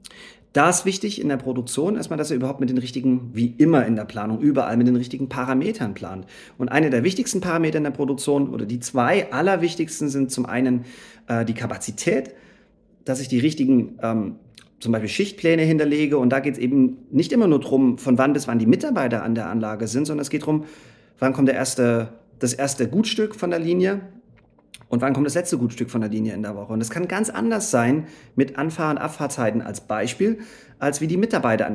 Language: German